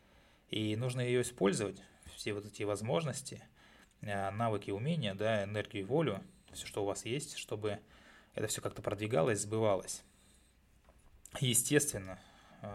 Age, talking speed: 20-39, 120 wpm